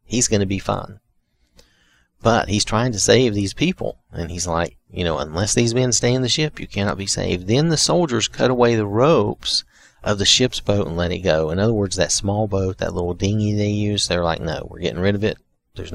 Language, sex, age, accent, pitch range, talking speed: English, male, 40-59, American, 90-120 Hz, 235 wpm